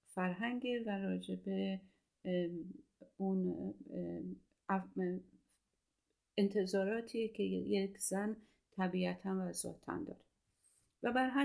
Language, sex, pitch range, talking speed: Persian, female, 180-210 Hz, 75 wpm